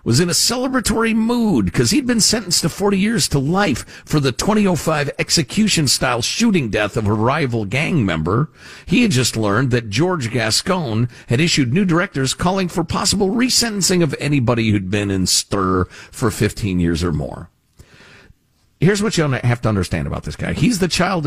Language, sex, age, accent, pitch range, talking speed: English, male, 50-69, American, 105-170 Hz, 180 wpm